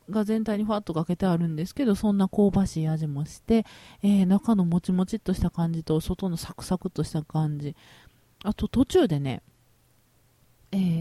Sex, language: female, Japanese